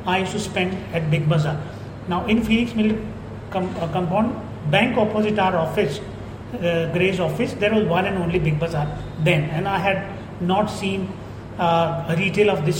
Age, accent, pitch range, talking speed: 30-49, native, 165-205 Hz, 180 wpm